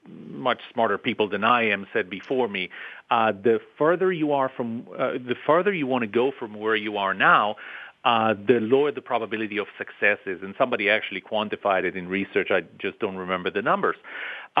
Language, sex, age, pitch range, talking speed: English, male, 40-59, 110-160 Hz, 200 wpm